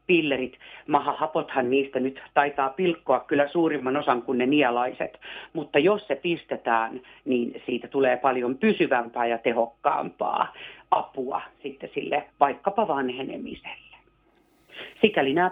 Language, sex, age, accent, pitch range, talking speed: Finnish, female, 40-59, native, 130-180 Hz, 115 wpm